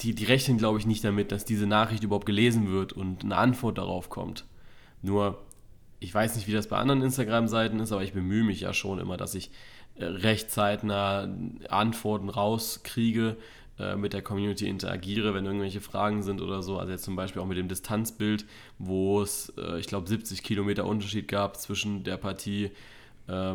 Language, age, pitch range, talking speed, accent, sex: German, 20-39, 95-110 Hz, 175 wpm, German, male